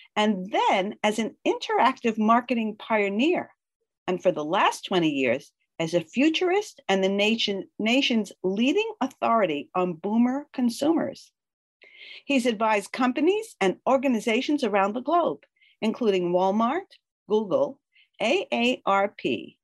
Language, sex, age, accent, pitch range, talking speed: English, female, 50-69, American, 195-295 Hz, 110 wpm